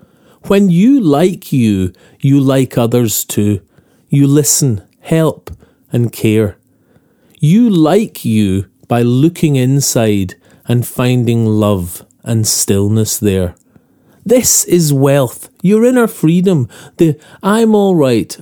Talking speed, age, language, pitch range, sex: 110 wpm, 40-59, English, 115-175 Hz, male